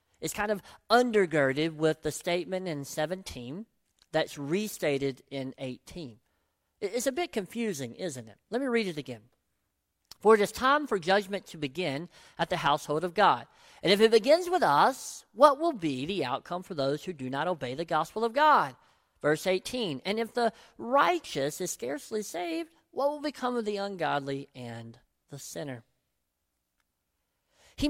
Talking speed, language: 165 wpm, English